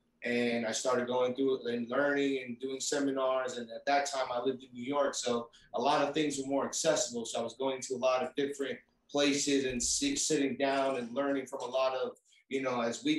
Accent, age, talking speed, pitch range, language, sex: American, 30-49, 225 wpm, 125-145 Hz, English, male